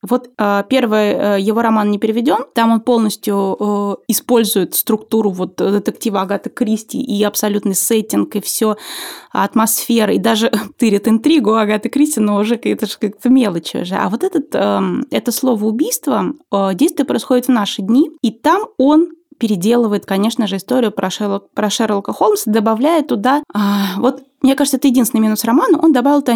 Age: 20-39